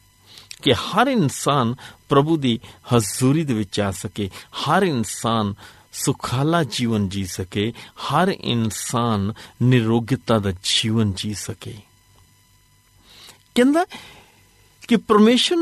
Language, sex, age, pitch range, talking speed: Punjabi, male, 50-69, 105-160 Hz, 100 wpm